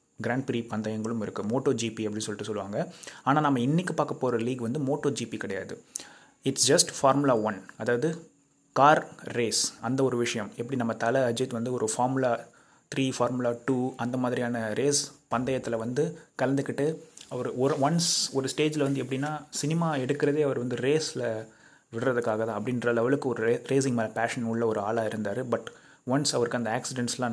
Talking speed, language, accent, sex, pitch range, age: 160 wpm, Tamil, native, male, 115-135 Hz, 30-49